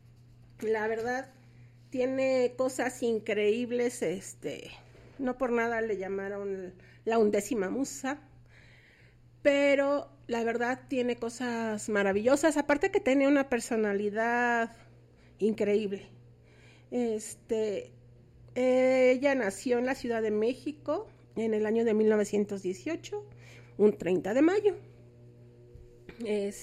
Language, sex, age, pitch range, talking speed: Spanish, female, 50-69, 175-255 Hz, 90 wpm